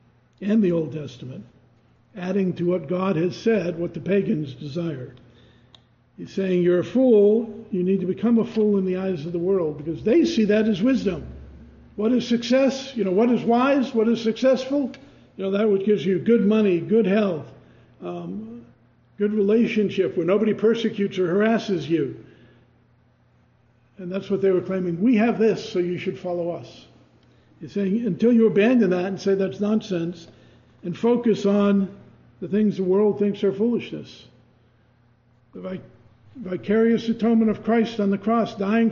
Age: 60-79